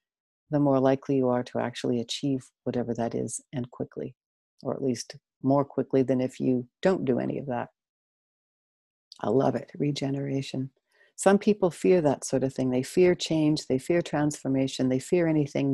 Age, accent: 60-79, American